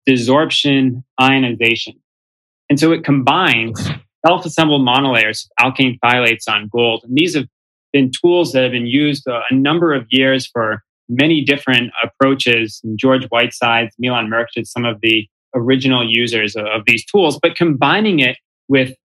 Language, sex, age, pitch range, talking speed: English, male, 20-39, 115-145 Hz, 155 wpm